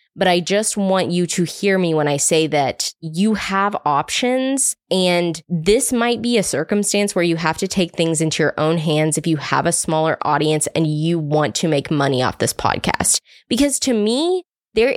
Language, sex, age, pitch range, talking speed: English, female, 20-39, 160-215 Hz, 200 wpm